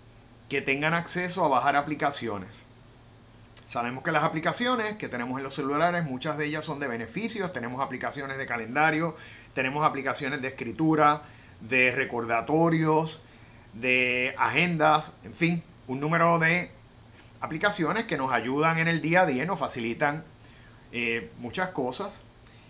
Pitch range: 115-155 Hz